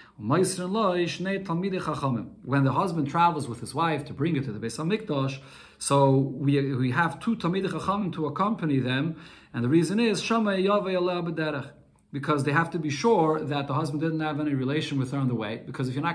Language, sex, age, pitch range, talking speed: English, male, 40-59, 135-185 Hz, 180 wpm